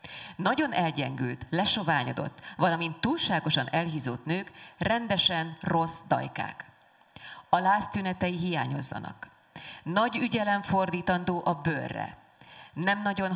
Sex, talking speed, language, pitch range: female, 90 wpm, Hungarian, 155-200 Hz